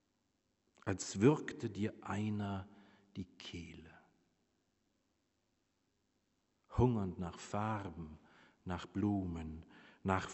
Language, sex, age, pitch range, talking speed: German, male, 50-69, 90-100 Hz, 70 wpm